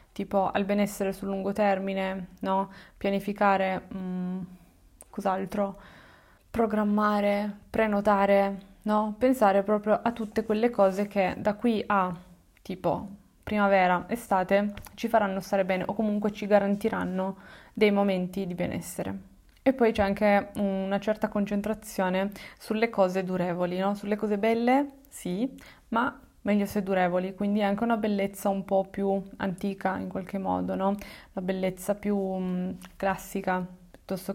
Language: Italian